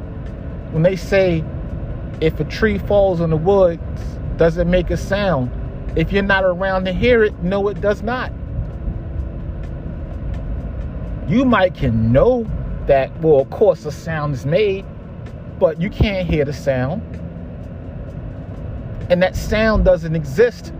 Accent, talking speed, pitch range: American, 140 wpm, 140-195 Hz